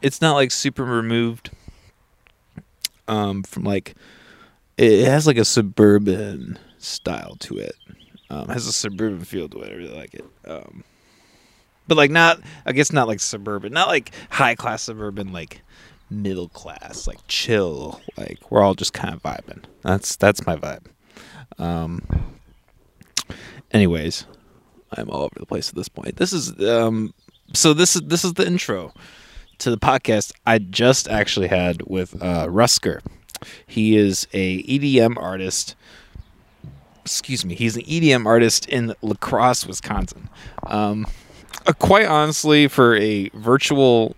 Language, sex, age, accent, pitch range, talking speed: English, male, 20-39, American, 95-125 Hz, 150 wpm